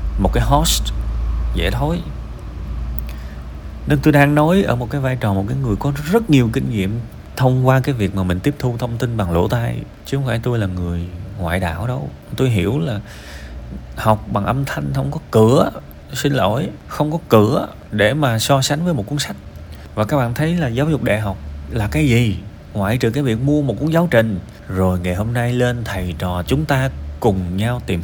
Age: 20-39